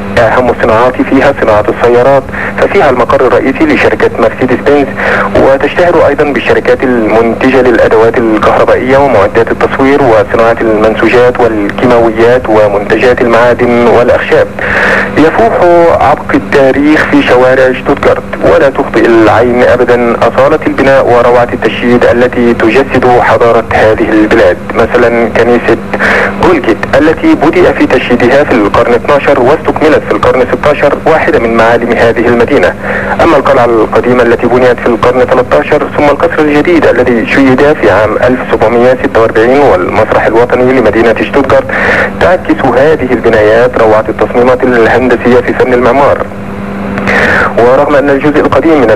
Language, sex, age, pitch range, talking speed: Arabic, male, 50-69, 115-130 Hz, 120 wpm